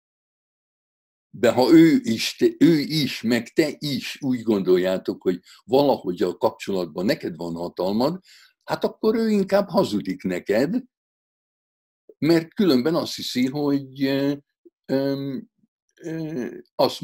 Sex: male